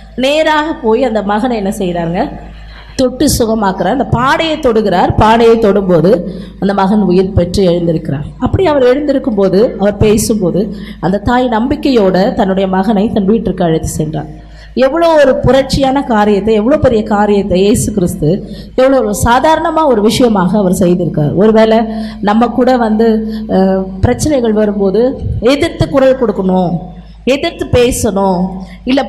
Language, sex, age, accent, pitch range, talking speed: Tamil, female, 20-39, native, 190-260 Hz, 120 wpm